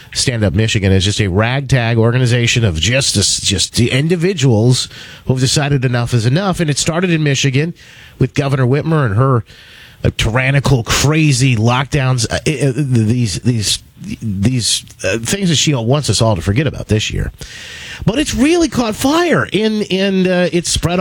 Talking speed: 170 wpm